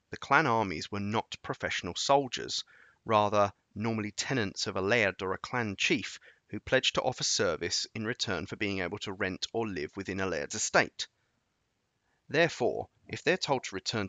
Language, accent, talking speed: English, British, 175 wpm